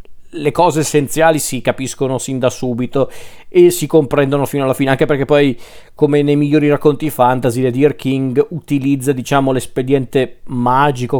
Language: Italian